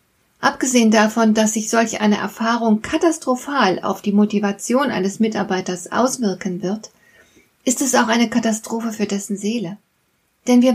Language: German